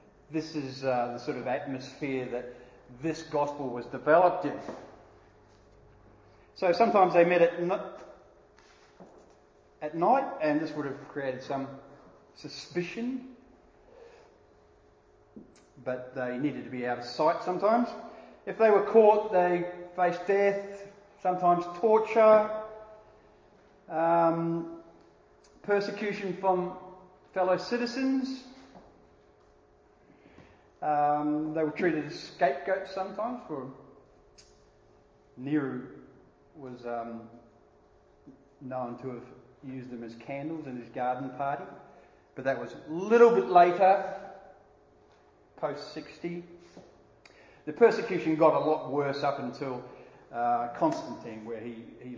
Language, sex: English, male